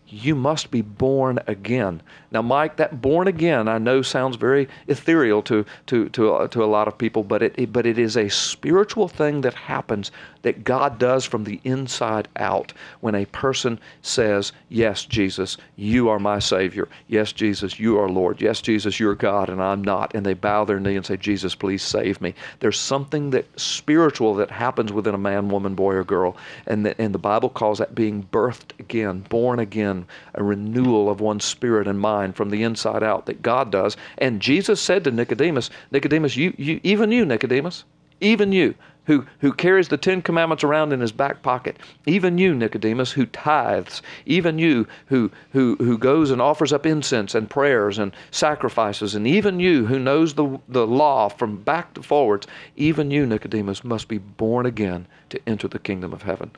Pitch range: 105-145 Hz